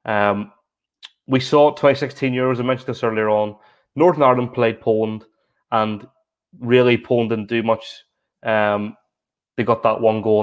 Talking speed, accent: 150 wpm, British